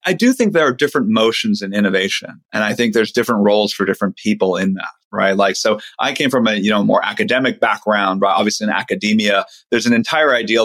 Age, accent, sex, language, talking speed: 30-49, American, male, English, 225 wpm